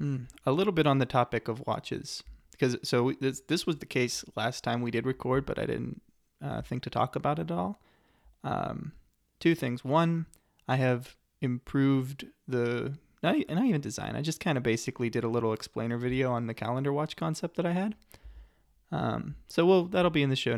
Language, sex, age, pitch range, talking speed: English, male, 20-39, 115-140 Hz, 200 wpm